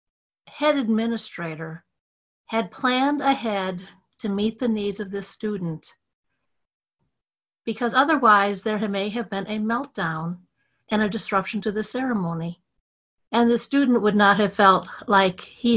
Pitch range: 195-245 Hz